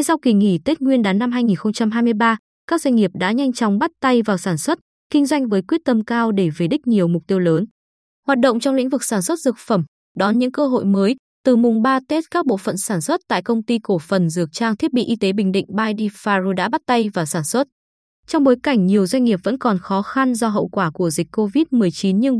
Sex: female